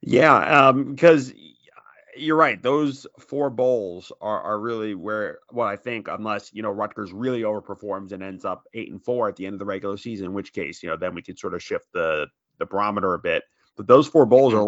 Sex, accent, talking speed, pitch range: male, American, 225 wpm, 100-125 Hz